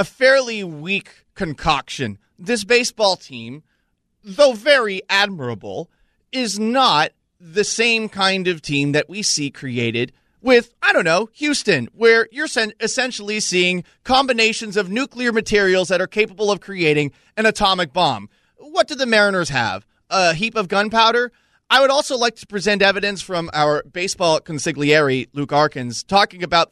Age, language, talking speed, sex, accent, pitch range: 30-49, English, 150 wpm, male, American, 160-225 Hz